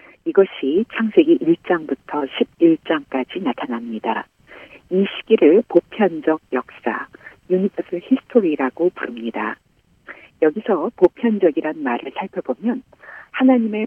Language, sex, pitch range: Korean, female, 150-230 Hz